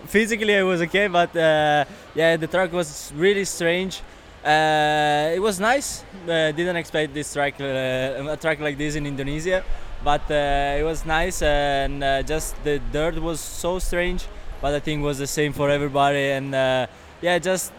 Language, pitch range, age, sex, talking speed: English, 140-165 Hz, 20-39, male, 180 wpm